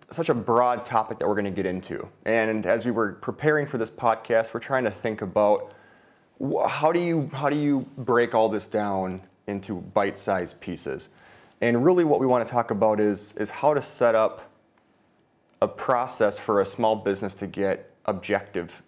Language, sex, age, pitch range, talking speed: English, male, 30-49, 105-125 Hz, 180 wpm